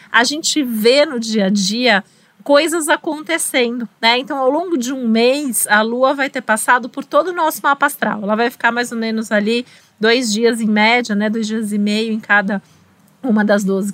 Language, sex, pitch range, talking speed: Portuguese, female, 220-275 Hz, 205 wpm